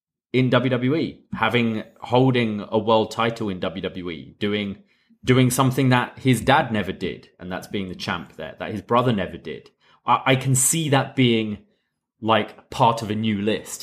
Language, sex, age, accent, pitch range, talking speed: English, male, 30-49, British, 105-130 Hz, 175 wpm